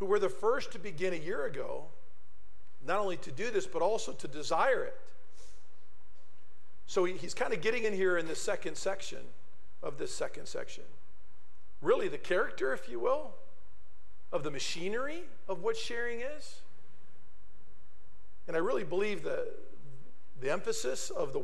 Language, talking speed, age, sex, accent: English, 155 wpm, 50-69, male, American